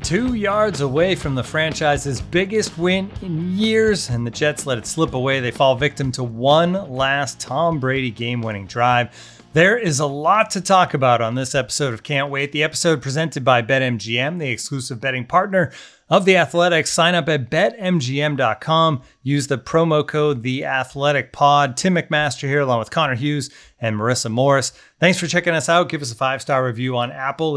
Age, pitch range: 30-49, 125-160 Hz